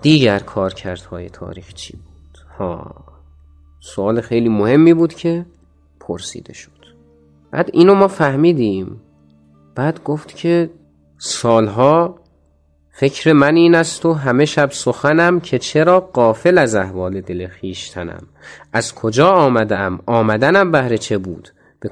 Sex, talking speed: male, 125 wpm